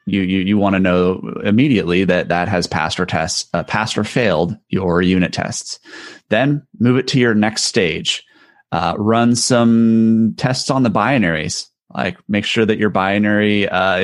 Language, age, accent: English, 30-49, American